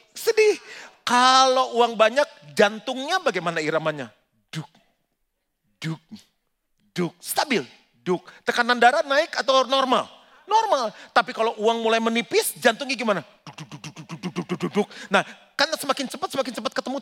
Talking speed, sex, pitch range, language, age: 115 wpm, male, 210-300 Hz, Indonesian, 40-59